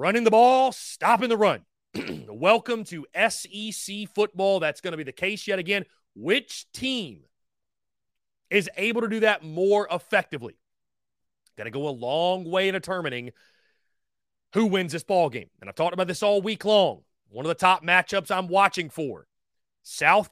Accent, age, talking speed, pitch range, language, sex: American, 30-49, 165 wpm, 145-200 Hz, English, male